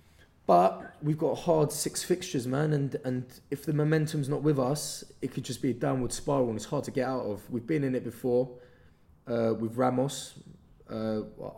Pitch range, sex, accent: 110-130 Hz, male, British